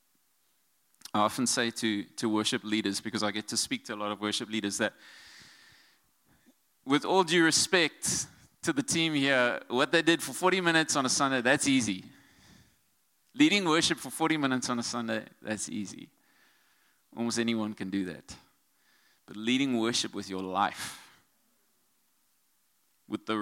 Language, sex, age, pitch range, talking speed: English, male, 20-39, 105-140 Hz, 155 wpm